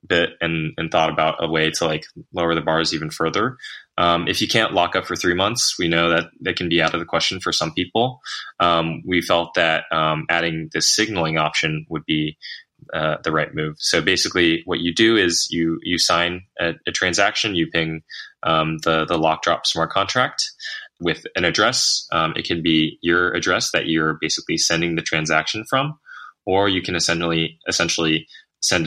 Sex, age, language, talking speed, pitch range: male, 20-39, English, 195 wpm, 80-90 Hz